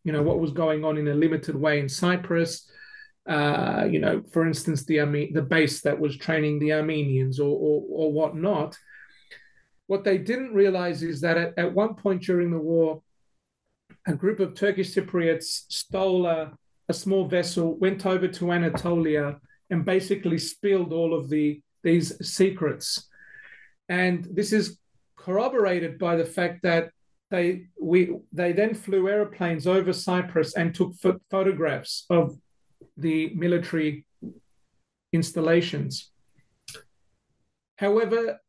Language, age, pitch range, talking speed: English, 40-59, 160-190 Hz, 140 wpm